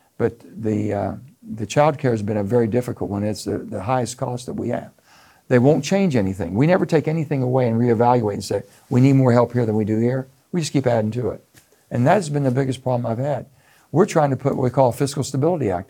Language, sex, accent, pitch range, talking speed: English, male, American, 110-135 Hz, 255 wpm